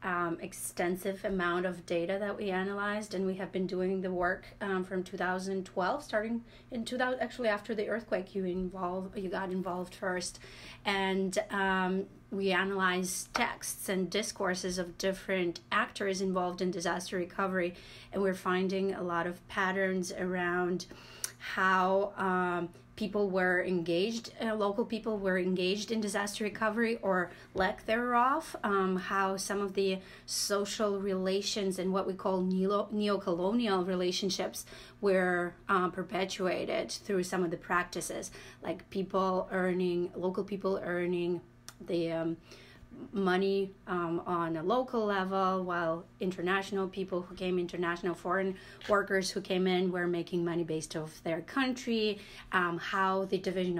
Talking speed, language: 140 wpm, English